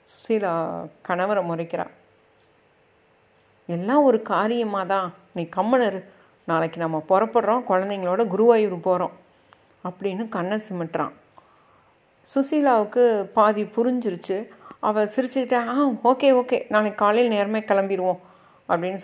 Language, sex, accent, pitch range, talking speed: Tamil, female, native, 185-230 Hz, 100 wpm